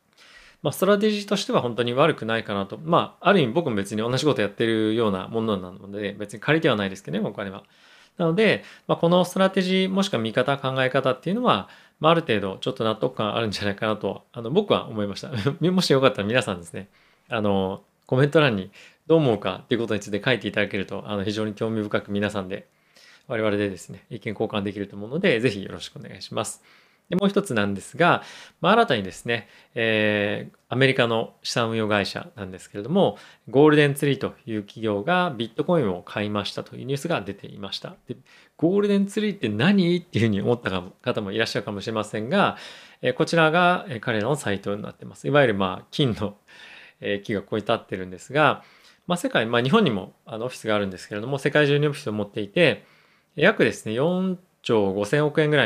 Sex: male